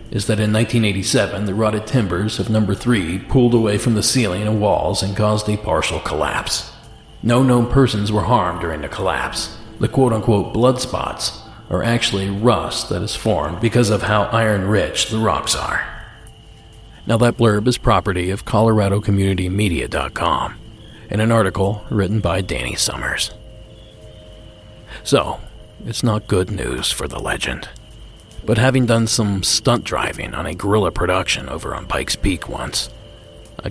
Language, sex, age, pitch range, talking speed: English, male, 40-59, 100-115 Hz, 150 wpm